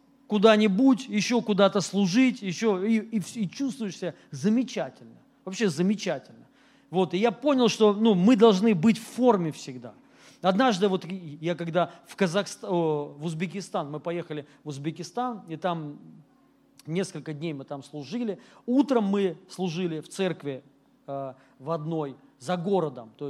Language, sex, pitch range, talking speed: Russian, male, 155-210 Hz, 130 wpm